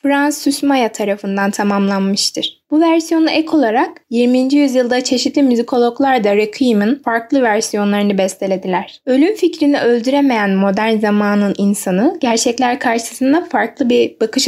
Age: 10-29